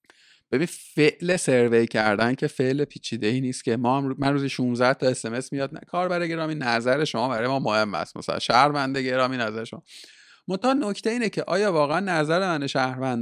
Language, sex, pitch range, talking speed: Persian, male, 120-160 Hz, 170 wpm